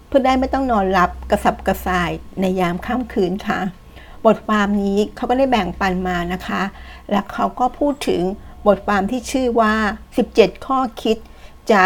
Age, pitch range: 60-79, 185-230 Hz